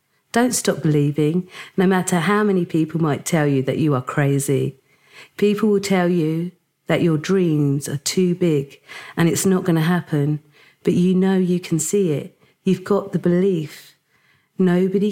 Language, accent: English, British